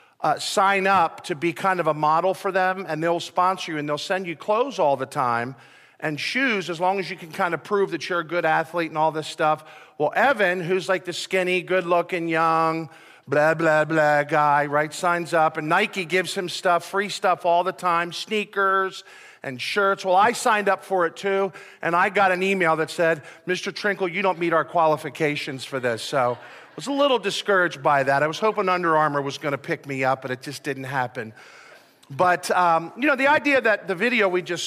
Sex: male